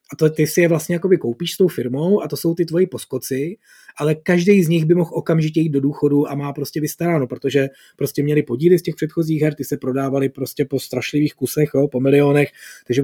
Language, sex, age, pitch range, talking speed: Czech, male, 20-39, 125-160 Hz, 235 wpm